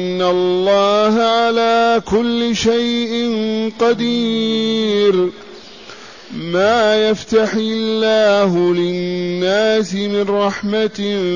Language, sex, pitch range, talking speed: Arabic, male, 195-225 Hz, 65 wpm